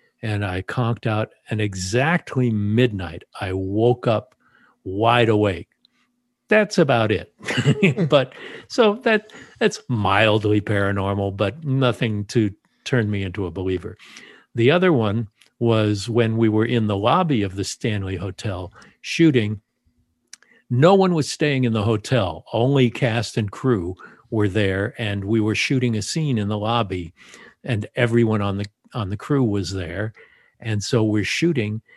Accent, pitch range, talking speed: American, 100-125 Hz, 150 wpm